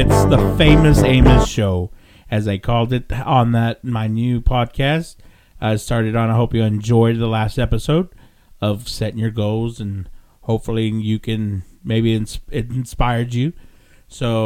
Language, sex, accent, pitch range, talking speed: English, male, American, 110-135 Hz, 150 wpm